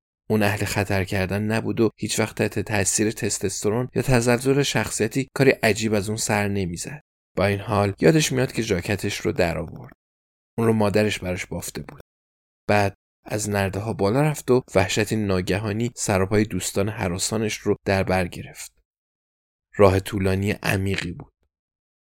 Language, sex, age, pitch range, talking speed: Persian, male, 20-39, 95-120 Hz, 145 wpm